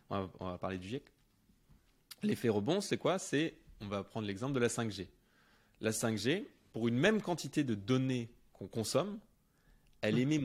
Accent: French